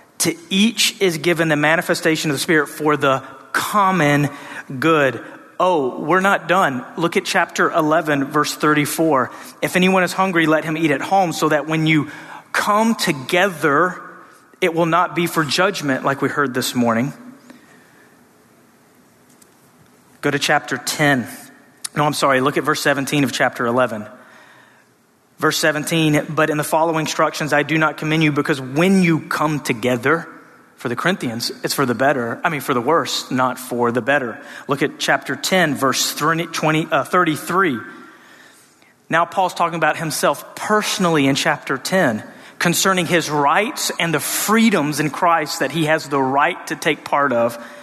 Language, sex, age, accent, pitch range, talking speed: English, male, 30-49, American, 140-175 Hz, 160 wpm